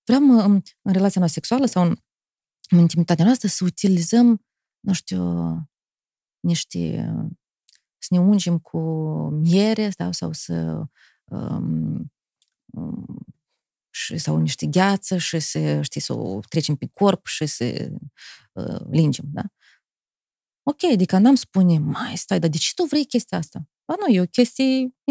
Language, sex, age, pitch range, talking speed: Romanian, female, 30-49, 175-230 Hz, 125 wpm